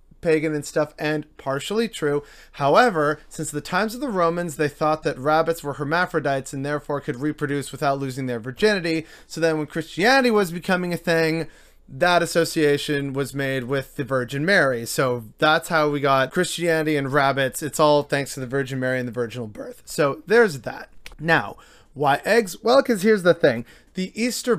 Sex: male